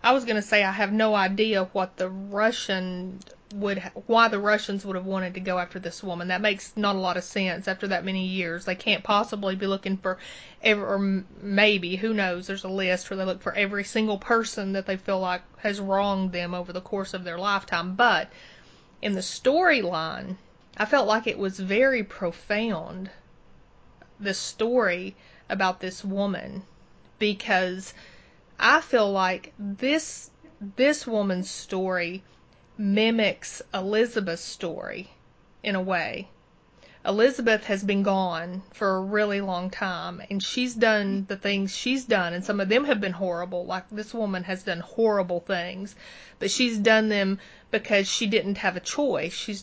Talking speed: 165 wpm